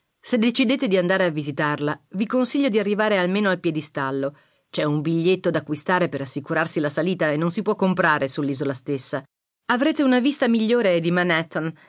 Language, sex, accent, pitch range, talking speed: Italian, female, native, 160-220 Hz, 175 wpm